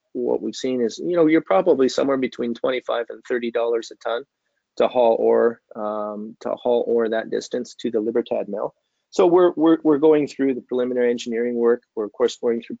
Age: 30-49